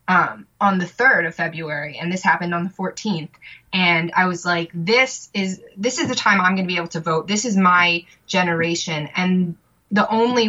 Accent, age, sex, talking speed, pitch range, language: American, 20-39, female, 205 wpm, 170-200 Hz, English